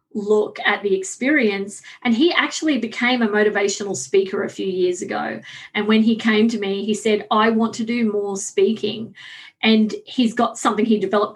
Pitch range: 205-235 Hz